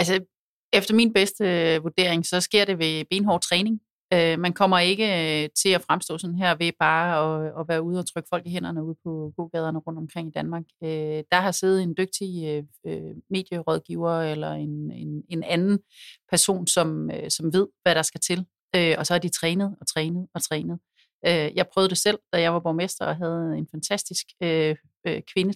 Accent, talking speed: native, 205 wpm